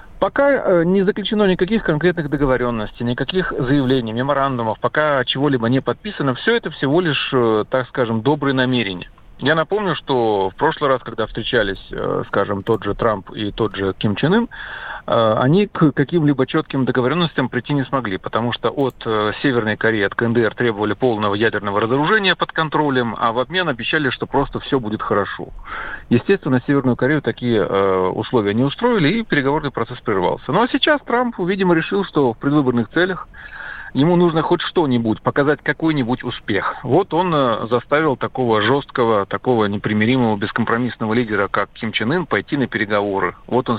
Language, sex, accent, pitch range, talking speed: Russian, male, native, 115-150 Hz, 155 wpm